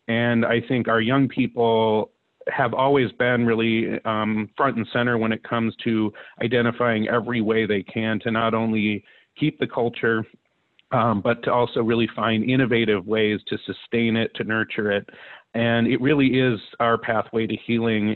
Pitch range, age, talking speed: 110-130 Hz, 40-59, 170 wpm